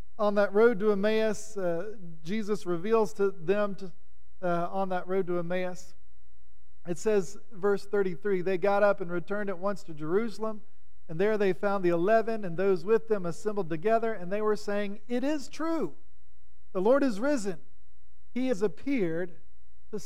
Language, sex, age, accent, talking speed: English, male, 50-69, American, 170 wpm